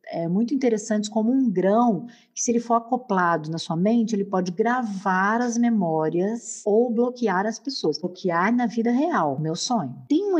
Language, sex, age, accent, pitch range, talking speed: Portuguese, female, 50-69, Brazilian, 190-250 Hz, 180 wpm